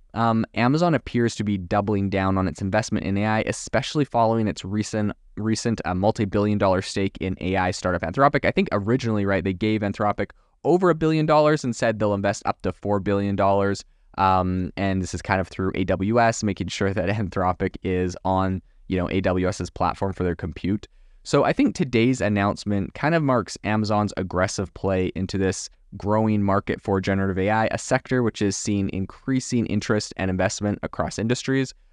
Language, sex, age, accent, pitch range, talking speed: English, male, 20-39, American, 95-110 Hz, 175 wpm